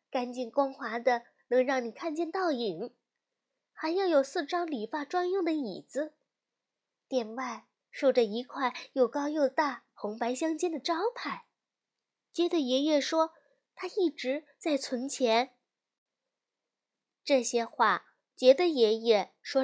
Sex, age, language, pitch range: female, 20-39, Chinese, 235-305 Hz